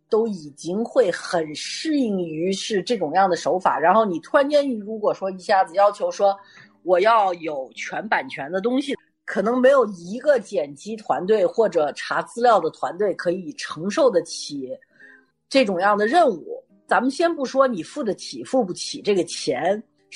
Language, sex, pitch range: Chinese, female, 180-275 Hz